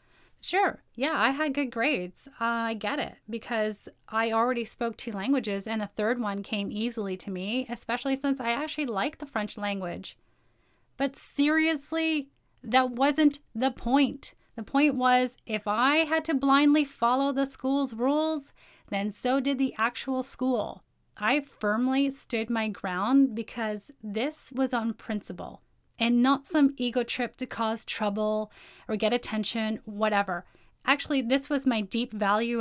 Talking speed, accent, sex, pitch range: 155 wpm, American, female, 210-265 Hz